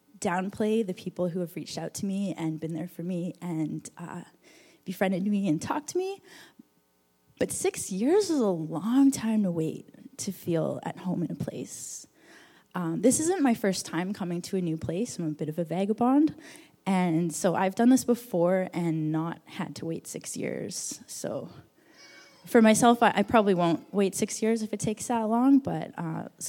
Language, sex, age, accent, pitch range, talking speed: English, female, 10-29, American, 160-215 Hz, 195 wpm